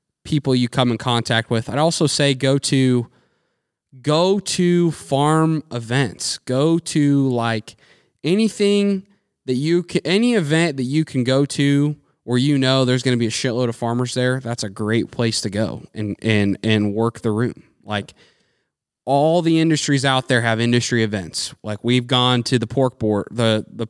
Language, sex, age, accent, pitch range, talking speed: English, male, 20-39, American, 110-145 Hz, 180 wpm